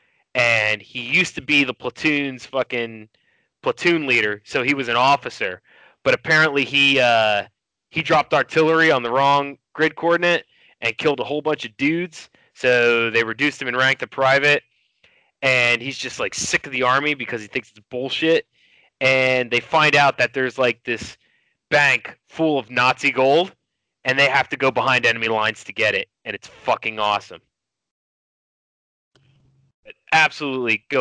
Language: English